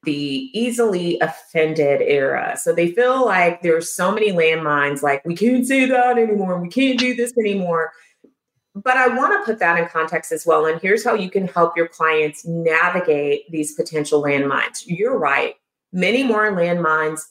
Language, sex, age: English, female, 30-49